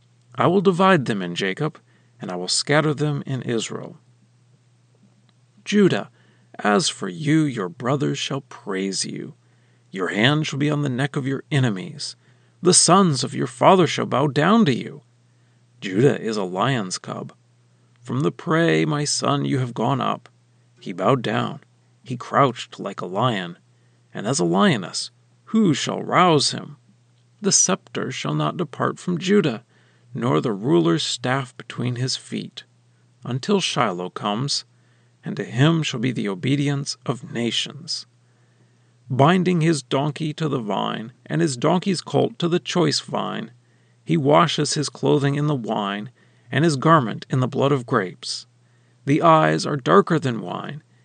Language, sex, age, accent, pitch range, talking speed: English, male, 40-59, American, 120-155 Hz, 155 wpm